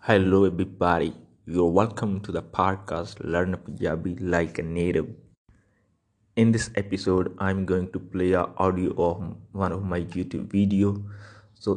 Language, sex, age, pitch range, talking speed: English, male, 20-39, 95-110 Hz, 145 wpm